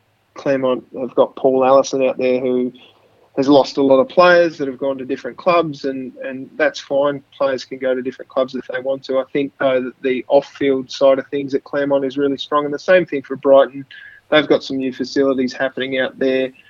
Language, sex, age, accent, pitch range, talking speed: English, male, 20-39, Australian, 130-140 Hz, 220 wpm